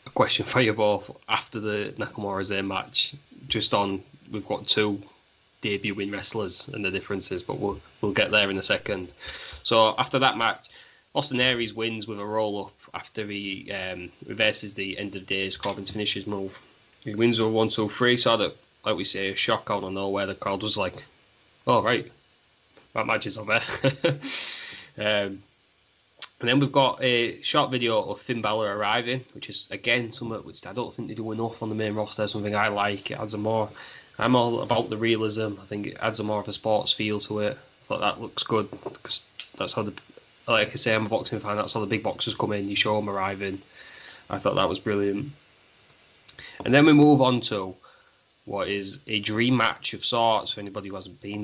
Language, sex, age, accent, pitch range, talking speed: English, male, 20-39, British, 100-115 Hz, 210 wpm